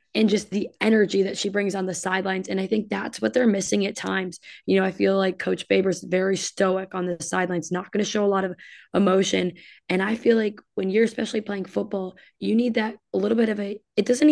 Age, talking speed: 20-39, 245 wpm